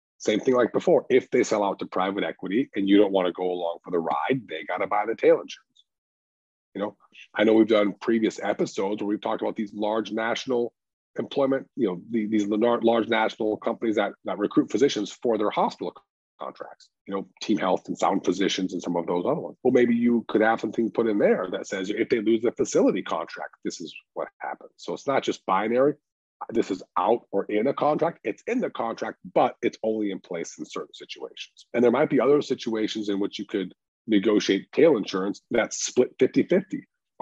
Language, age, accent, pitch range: English, 40-59, American, 105-140 Hz